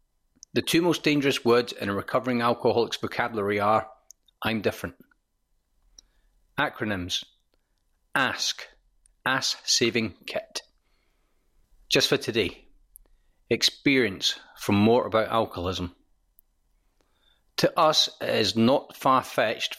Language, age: English, 40-59